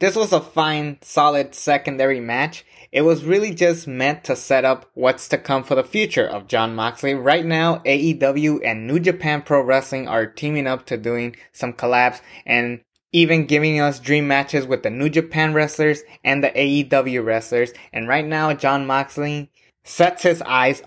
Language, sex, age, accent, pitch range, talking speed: English, male, 20-39, American, 130-155 Hz, 180 wpm